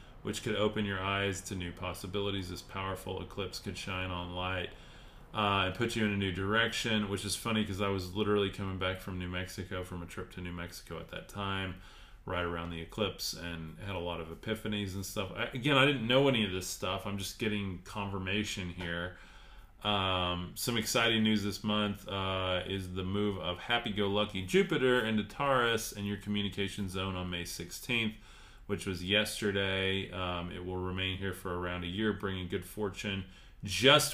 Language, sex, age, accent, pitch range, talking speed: English, male, 30-49, American, 95-110 Hz, 190 wpm